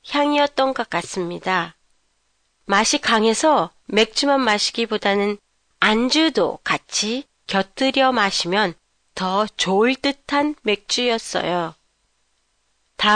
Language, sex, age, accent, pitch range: Japanese, female, 40-59, Korean, 200-285 Hz